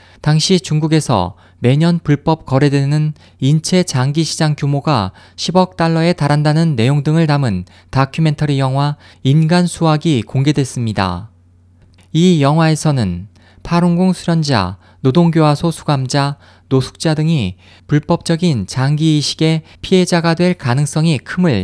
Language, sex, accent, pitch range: Korean, male, native, 115-170 Hz